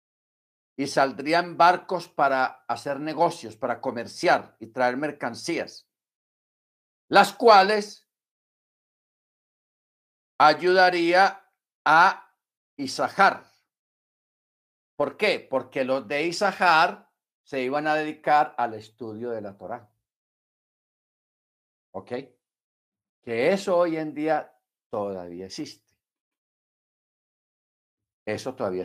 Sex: male